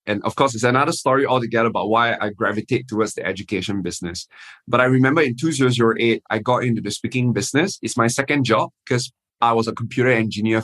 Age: 20-39